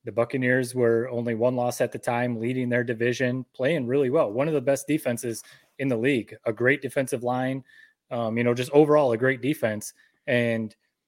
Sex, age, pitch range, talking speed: male, 20-39, 115-135 Hz, 195 wpm